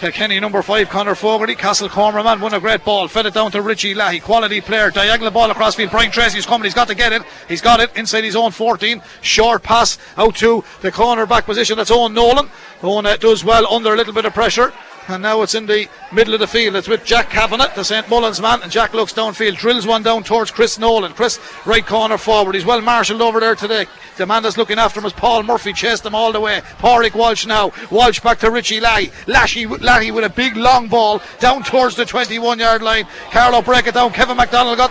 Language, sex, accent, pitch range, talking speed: English, male, Irish, 220-265 Hz, 235 wpm